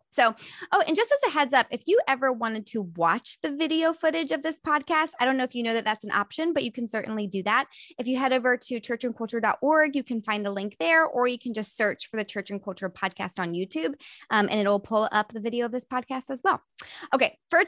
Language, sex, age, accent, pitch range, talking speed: English, female, 10-29, American, 205-275 Hz, 255 wpm